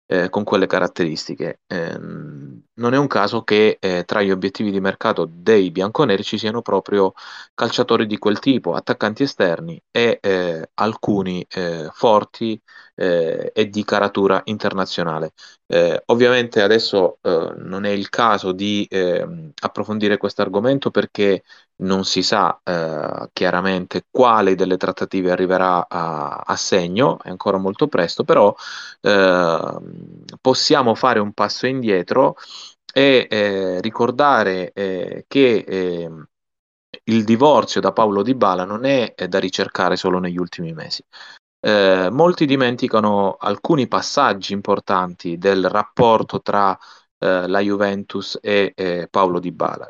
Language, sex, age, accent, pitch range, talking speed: Italian, male, 30-49, native, 95-120 Hz, 135 wpm